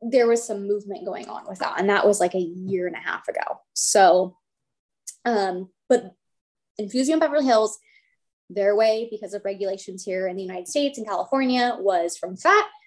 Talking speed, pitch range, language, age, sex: 180 wpm, 190-240 Hz, English, 20-39, female